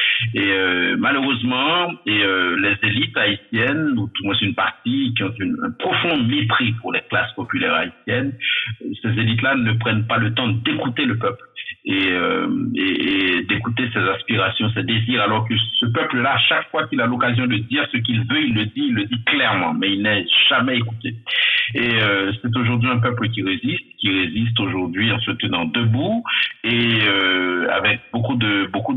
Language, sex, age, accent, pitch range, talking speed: French, male, 50-69, French, 105-125 Hz, 190 wpm